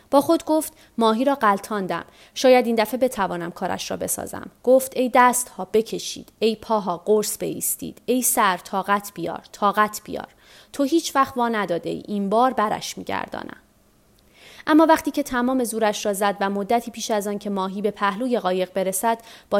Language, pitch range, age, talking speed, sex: Persian, 205-260 Hz, 30-49, 175 wpm, female